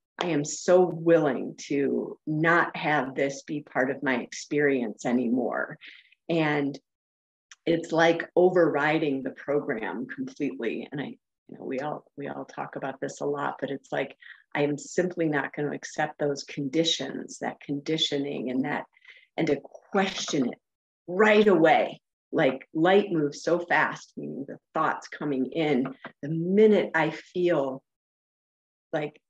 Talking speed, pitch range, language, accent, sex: 145 wpm, 140-170 Hz, English, American, female